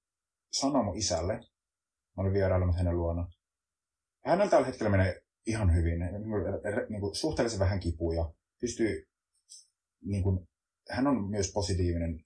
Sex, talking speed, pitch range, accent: male, 115 wpm, 85-100 Hz, native